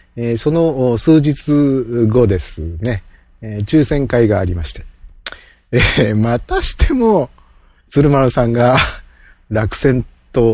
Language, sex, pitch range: Japanese, male, 100-145 Hz